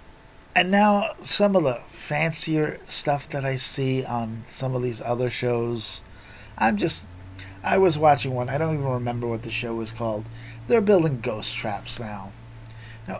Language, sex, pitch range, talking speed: English, male, 110-145 Hz, 170 wpm